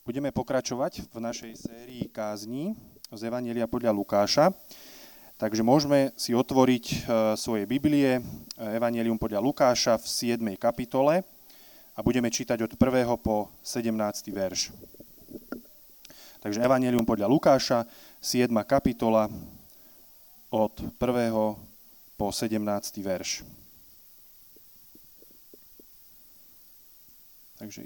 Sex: male